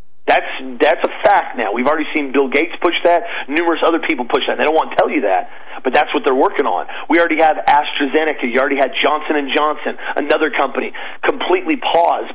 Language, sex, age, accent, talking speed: English, male, 40-59, American, 215 wpm